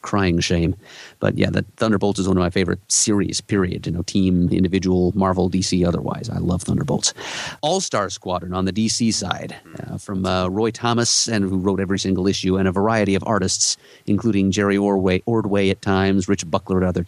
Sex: male